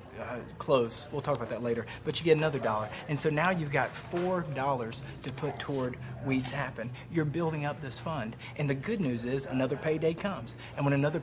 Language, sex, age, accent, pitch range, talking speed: English, male, 30-49, American, 120-155 Hz, 215 wpm